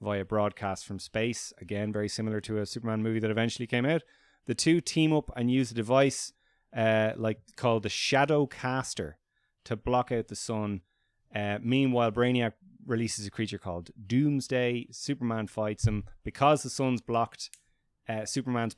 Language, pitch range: English, 105-125 Hz